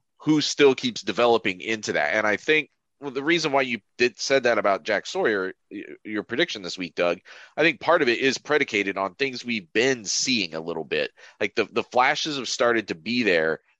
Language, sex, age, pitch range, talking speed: English, male, 30-49, 110-165 Hz, 215 wpm